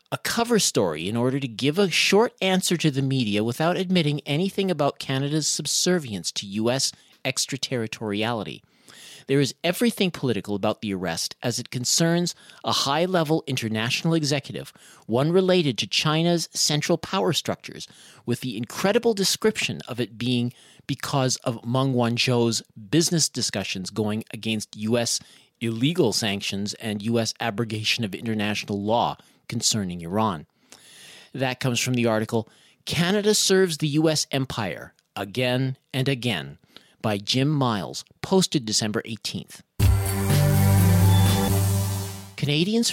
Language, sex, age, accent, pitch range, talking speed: English, male, 40-59, American, 110-160 Hz, 125 wpm